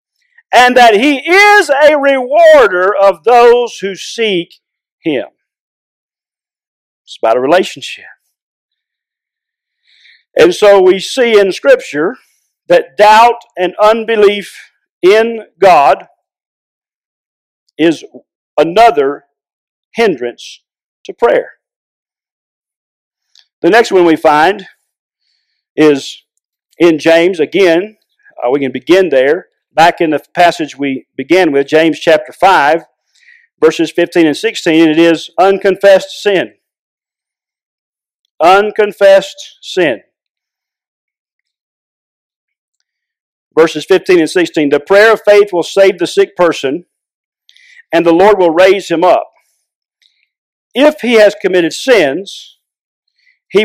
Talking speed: 105 wpm